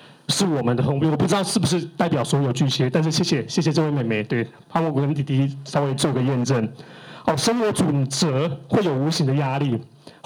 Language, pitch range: Chinese, 140-190 Hz